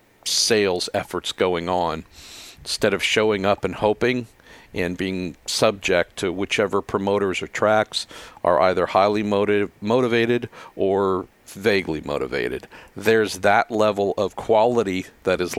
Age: 50-69